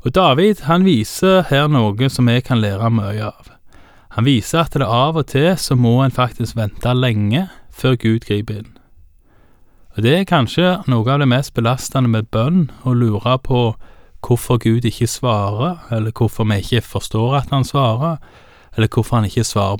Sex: male